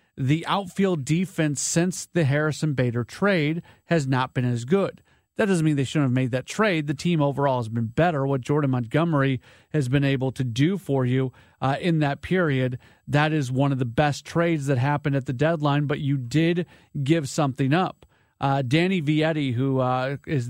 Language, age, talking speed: English, 40-59, 195 wpm